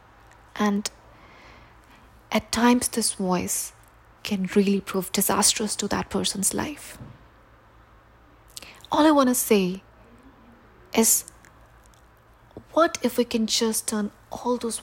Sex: female